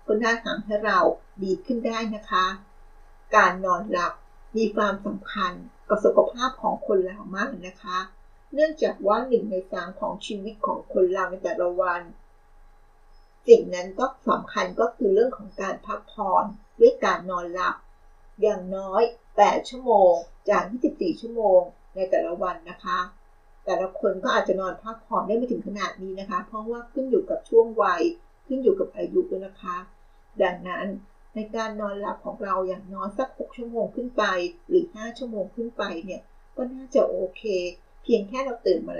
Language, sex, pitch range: Thai, female, 190-265 Hz